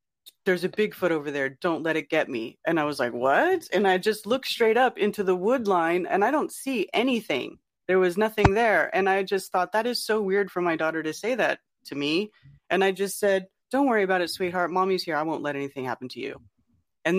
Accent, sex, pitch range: American, female, 165-225 Hz